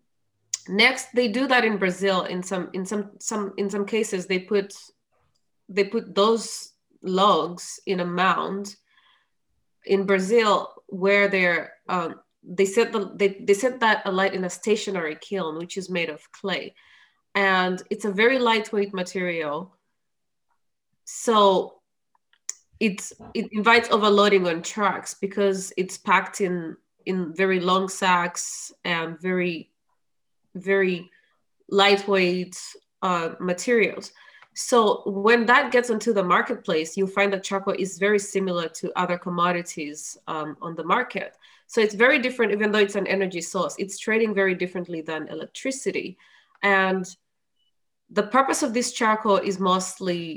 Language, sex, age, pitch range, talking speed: English, female, 30-49, 180-215 Hz, 140 wpm